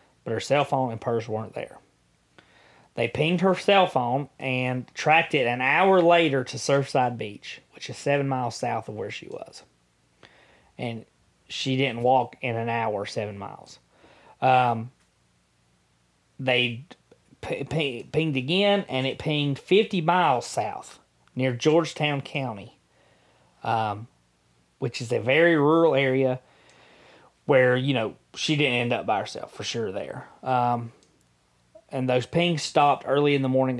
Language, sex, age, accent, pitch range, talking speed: English, male, 30-49, American, 115-145 Hz, 145 wpm